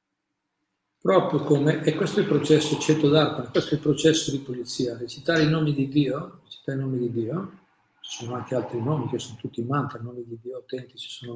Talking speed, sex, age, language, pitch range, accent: 205 wpm, male, 50-69, Italian, 125-155 Hz, native